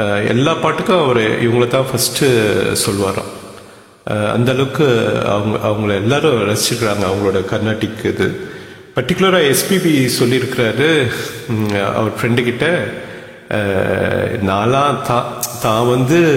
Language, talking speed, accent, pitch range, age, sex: English, 60 wpm, Indian, 110-150 Hz, 50-69, male